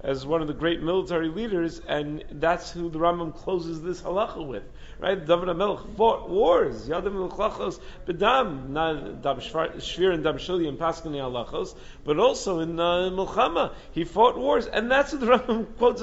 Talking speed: 170 wpm